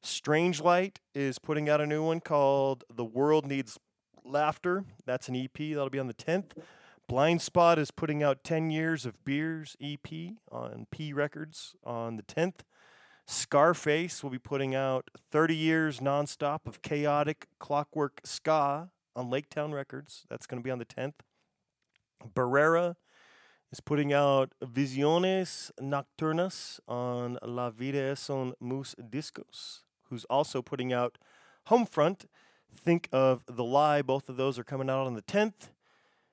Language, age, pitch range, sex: English, 30-49, 130-155 Hz, male